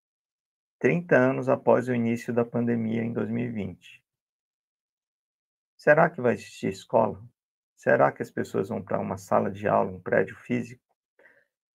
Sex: male